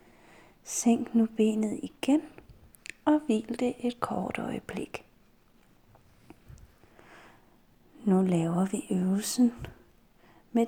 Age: 30-49